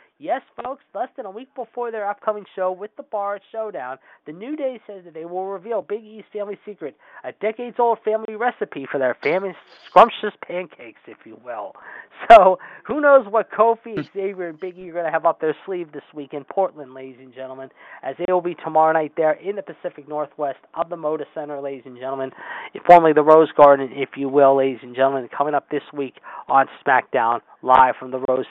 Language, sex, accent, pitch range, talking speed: English, male, American, 140-185 Hz, 205 wpm